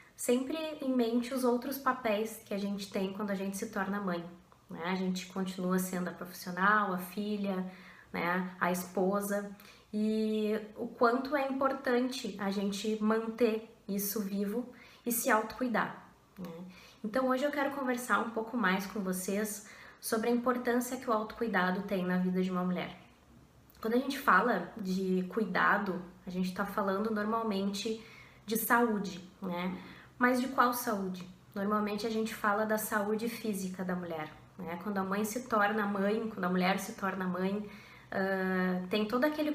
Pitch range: 190-225 Hz